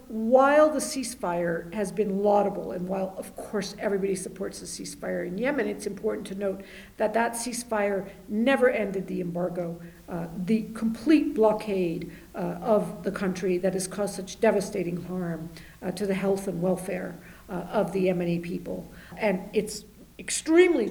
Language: English